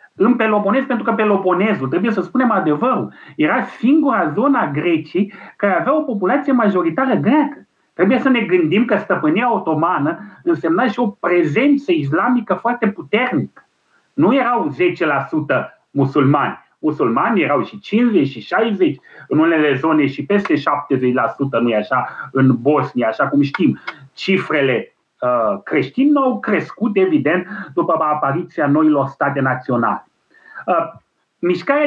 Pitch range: 170-260 Hz